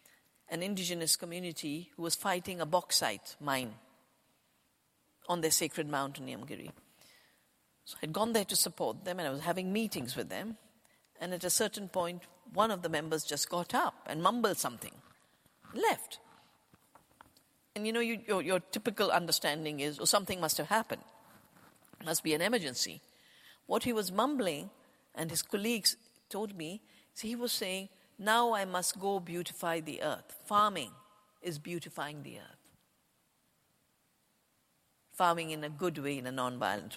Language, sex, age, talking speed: English, female, 50-69, 160 wpm